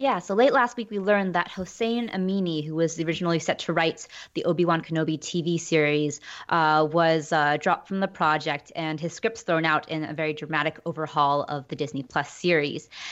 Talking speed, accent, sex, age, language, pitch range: 195 wpm, American, female, 20-39, English, 160-195 Hz